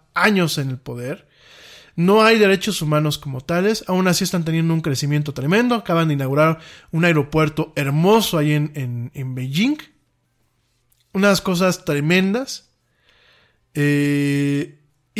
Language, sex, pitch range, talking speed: Spanish, male, 145-210 Hz, 125 wpm